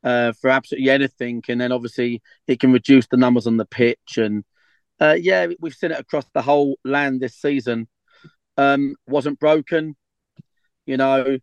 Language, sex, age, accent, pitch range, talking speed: English, male, 30-49, British, 125-145 Hz, 170 wpm